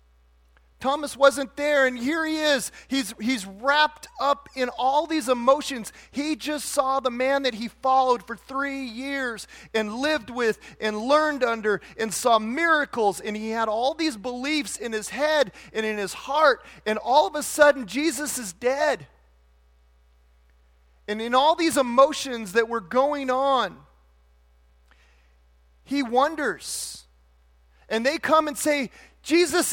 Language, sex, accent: English, male, American